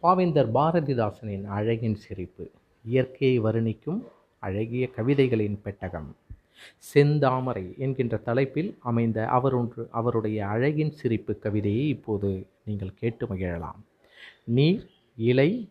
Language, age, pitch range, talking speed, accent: Tamil, 30-49, 110-145 Hz, 90 wpm, native